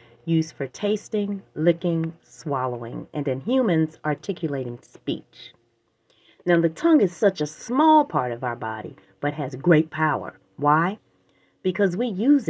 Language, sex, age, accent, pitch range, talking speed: English, female, 40-59, American, 140-195 Hz, 140 wpm